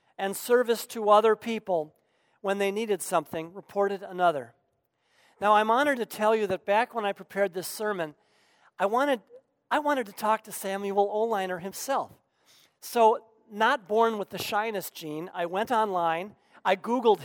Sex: male